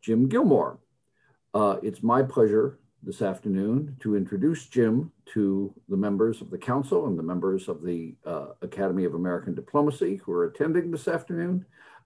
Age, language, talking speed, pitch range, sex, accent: 50-69, English, 160 wpm, 95-135 Hz, male, American